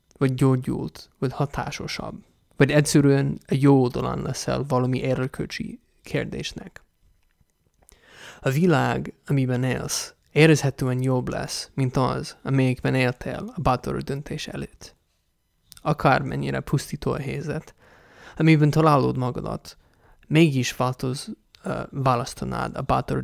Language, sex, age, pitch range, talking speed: English, male, 20-39, 125-145 Hz, 105 wpm